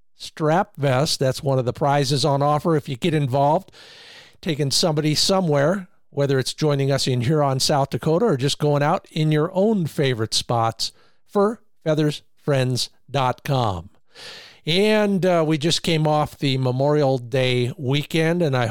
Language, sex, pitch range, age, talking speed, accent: English, male, 130-160 Hz, 50-69, 150 wpm, American